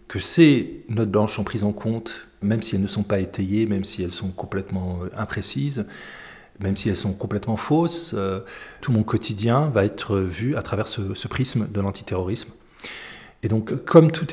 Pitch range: 100-115 Hz